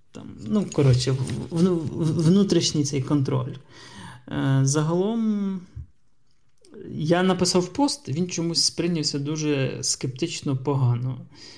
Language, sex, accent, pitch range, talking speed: Ukrainian, male, native, 135-160 Hz, 105 wpm